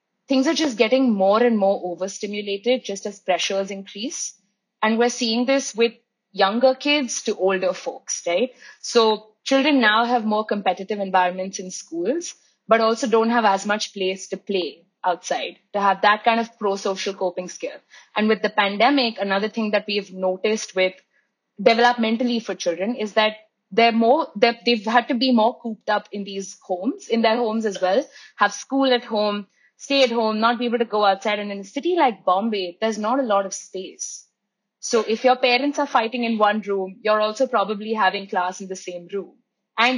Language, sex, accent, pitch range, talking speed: English, female, Indian, 195-240 Hz, 190 wpm